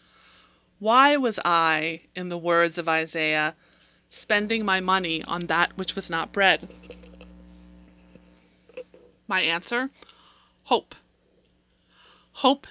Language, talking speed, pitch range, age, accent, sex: English, 100 wpm, 165-225 Hz, 30-49, American, female